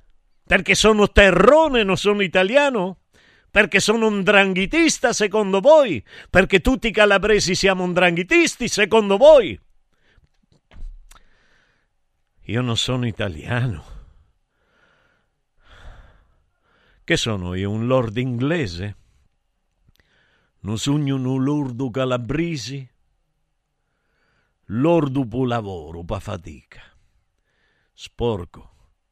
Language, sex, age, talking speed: Italian, male, 50-69, 85 wpm